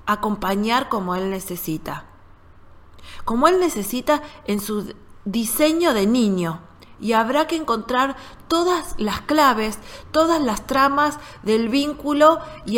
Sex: female